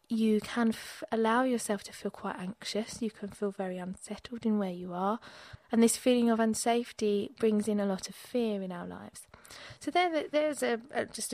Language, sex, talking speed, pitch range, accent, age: English, female, 200 wpm, 195-235 Hz, British, 20-39